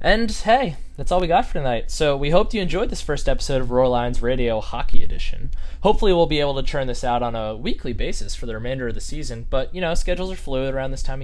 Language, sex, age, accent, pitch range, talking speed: English, male, 10-29, American, 115-150 Hz, 255 wpm